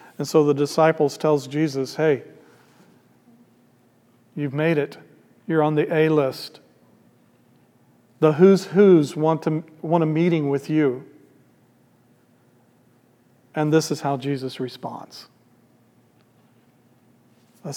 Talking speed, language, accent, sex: 105 wpm, English, American, male